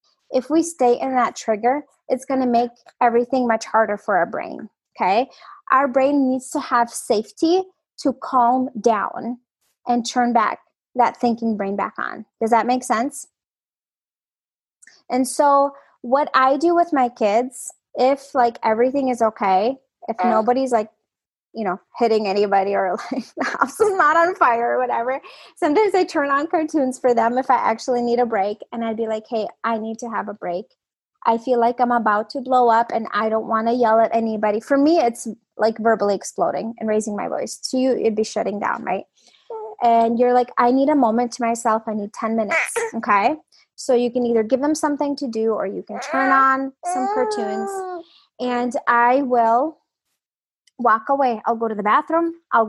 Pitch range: 225-275 Hz